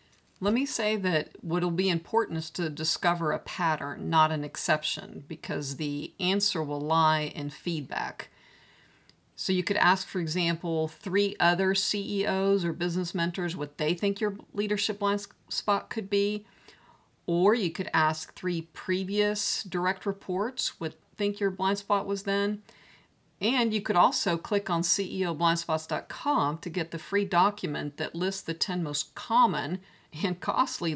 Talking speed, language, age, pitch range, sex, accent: 155 wpm, English, 50-69, 160-200 Hz, female, American